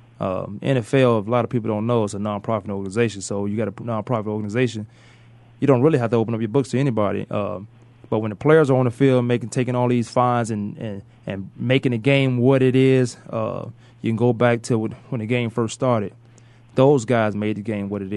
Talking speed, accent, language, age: 230 wpm, American, English, 20-39